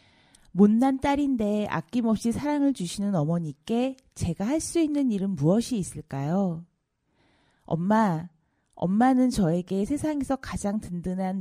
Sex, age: female, 40-59